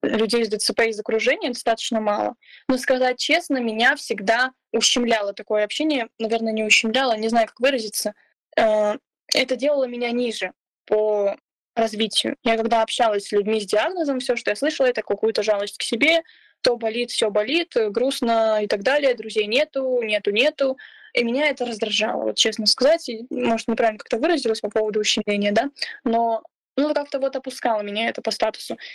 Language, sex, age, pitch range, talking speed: Russian, female, 10-29, 220-265 Hz, 170 wpm